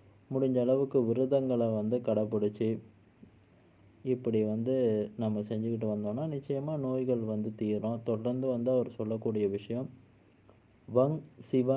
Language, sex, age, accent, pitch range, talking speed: Tamil, male, 20-39, native, 105-125 Hz, 105 wpm